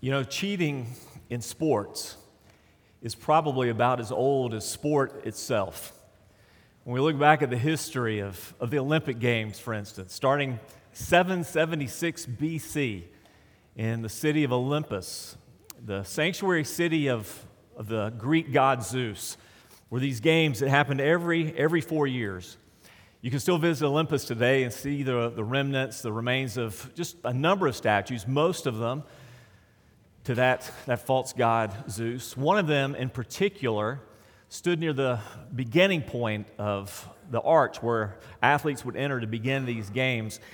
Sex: male